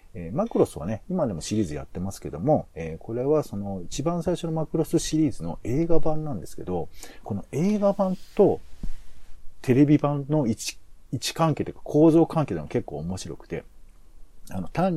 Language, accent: Japanese, native